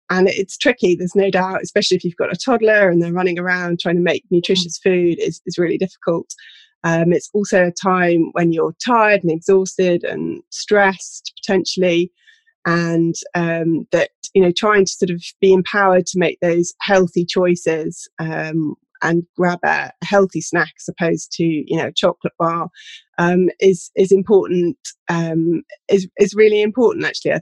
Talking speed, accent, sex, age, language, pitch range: 175 wpm, British, female, 20-39, English, 170-195 Hz